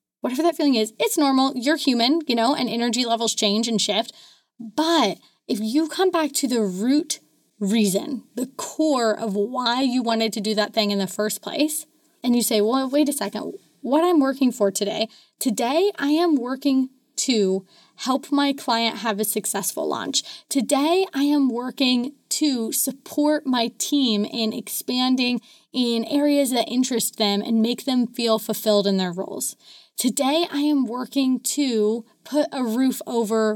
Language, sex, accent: English, female, American